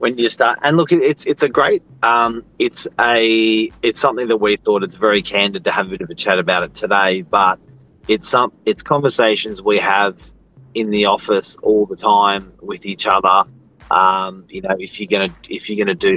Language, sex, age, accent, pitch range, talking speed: English, male, 30-49, Australian, 100-135 Hz, 215 wpm